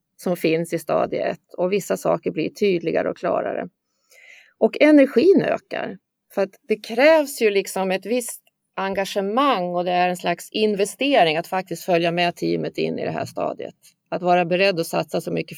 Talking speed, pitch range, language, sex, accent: 175 wpm, 180-230 Hz, Swedish, female, native